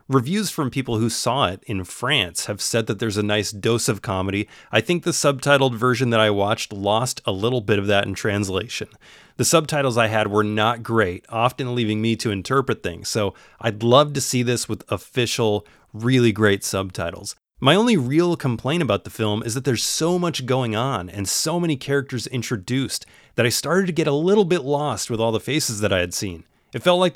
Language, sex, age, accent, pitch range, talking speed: English, male, 30-49, American, 105-140 Hz, 210 wpm